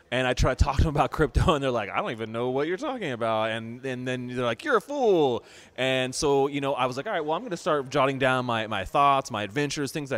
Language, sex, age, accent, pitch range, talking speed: English, male, 20-39, American, 115-145 Hz, 300 wpm